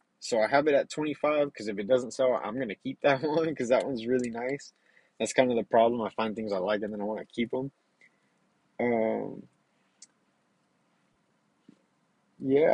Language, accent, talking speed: English, American, 195 wpm